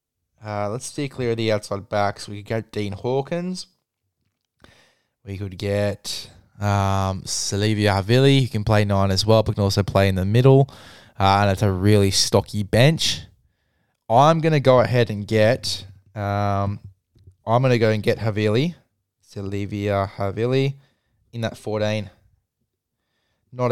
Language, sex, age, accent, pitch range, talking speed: English, male, 20-39, Australian, 105-130 Hz, 150 wpm